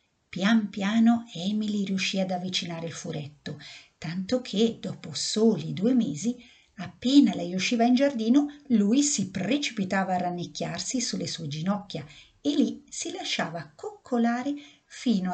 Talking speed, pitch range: 130 wpm, 170-235 Hz